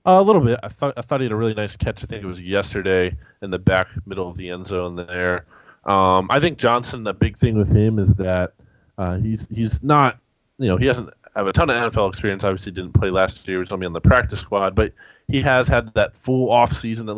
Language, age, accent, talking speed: English, 20-39, American, 260 wpm